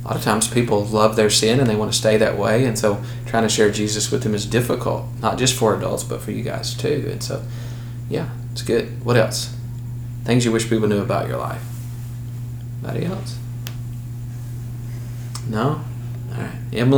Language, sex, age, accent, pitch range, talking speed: English, male, 20-39, American, 110-120 Hz, 185 wpm